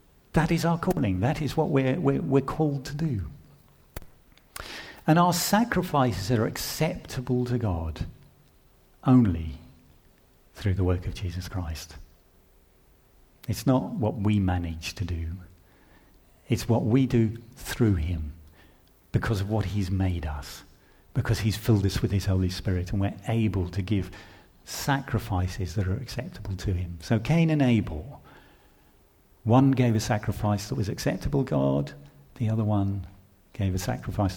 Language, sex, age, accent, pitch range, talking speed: English, male, 50-69, British, 95-130 Hz, 145 wpm